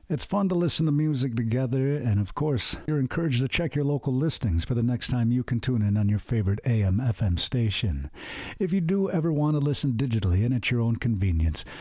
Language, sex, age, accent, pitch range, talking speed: English, male, 50-69, American, 105-140 Hz, 220 wpm